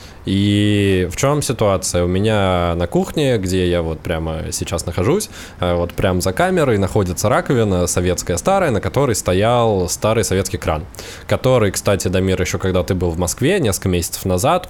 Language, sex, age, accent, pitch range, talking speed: Russian, male, 20-39, native, 90-110 Hz, 165 wpm